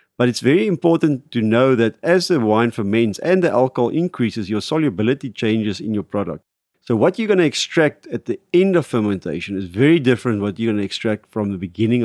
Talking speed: 220 wpm